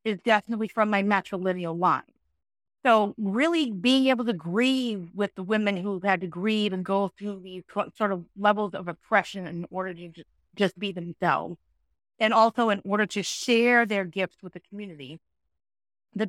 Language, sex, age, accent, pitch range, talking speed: English, female, 30-49, American, 175-215 Hz, 170 wpm